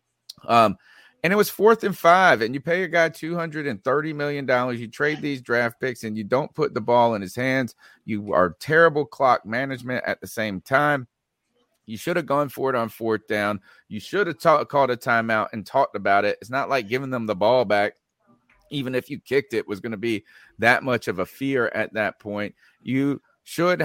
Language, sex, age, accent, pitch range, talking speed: English, male, 40-59, American, 115-160 Hz, 210 wpm